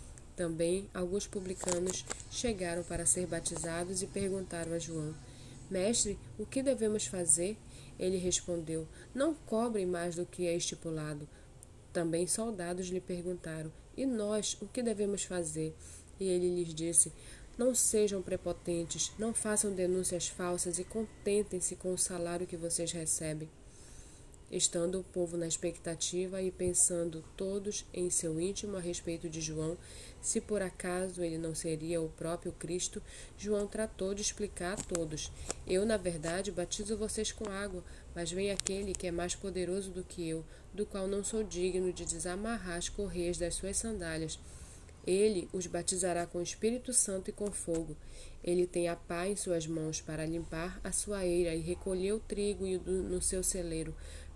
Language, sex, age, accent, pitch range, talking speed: Portuguese, female, 20-39, Brazilian, 170-195 Hz, 155 wpm